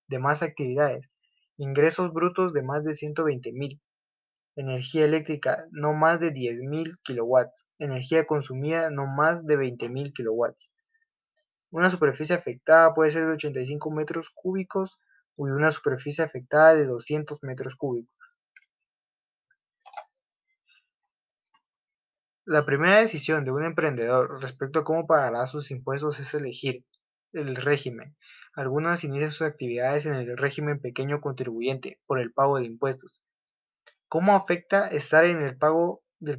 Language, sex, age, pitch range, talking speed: English, male, 20-39, 135-160 Hz, 125 wpm